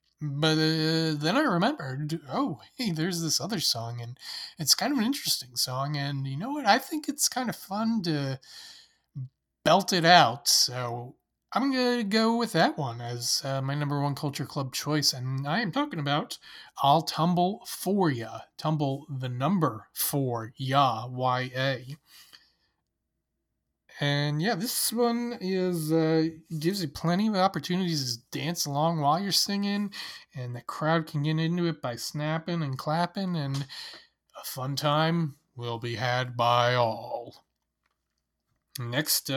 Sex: male